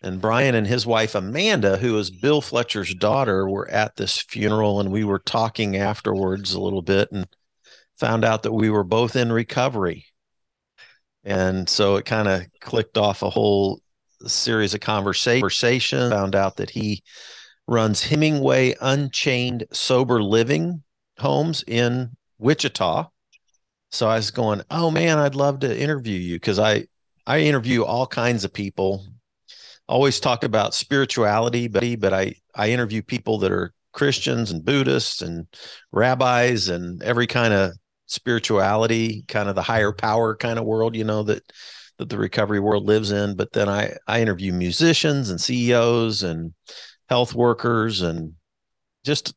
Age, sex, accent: 50-69, male, American